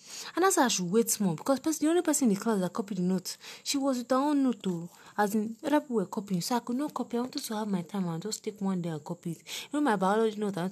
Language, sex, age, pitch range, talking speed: English, female, 30-49, 160-220 Hz, 320 wpm